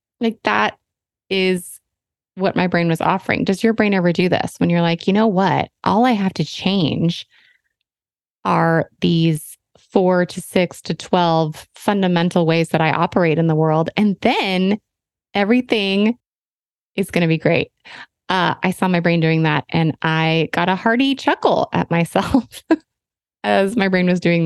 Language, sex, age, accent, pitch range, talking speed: English, female, 20-39, American, 160-200 Hz, 165 wpm